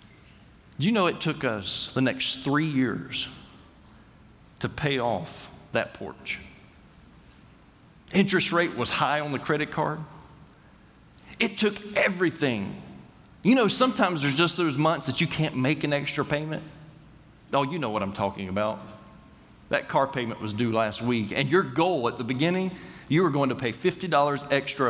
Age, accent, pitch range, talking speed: 40-59, American, 120-160 Hz, 160 wpm